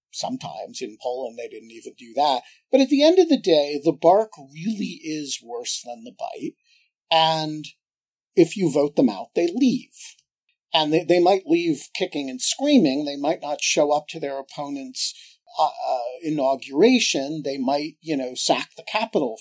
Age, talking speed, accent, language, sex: 50-69, 175 wpm, American, English, male